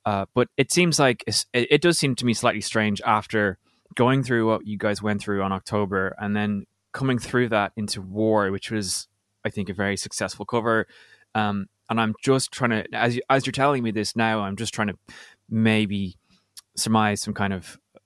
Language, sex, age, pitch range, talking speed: English, male, 20-39, 100-115 Hz, 200 wpm